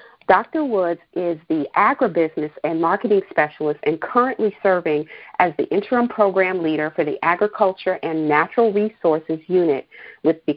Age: 40-59